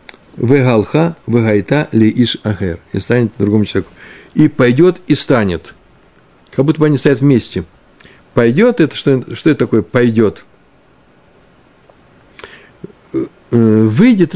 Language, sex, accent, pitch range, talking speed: Russian, male, native, 105-145 Hz, 105 wpm